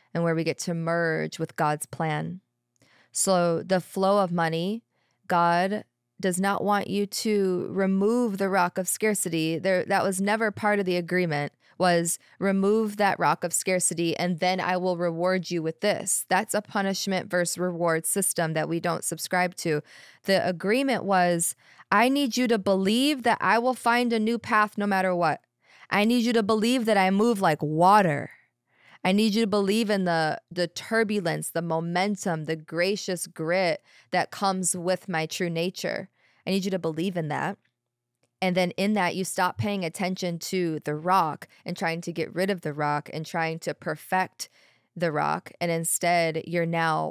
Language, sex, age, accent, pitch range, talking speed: English, female, 20-39, American, 165-195 Hz, 180 wpm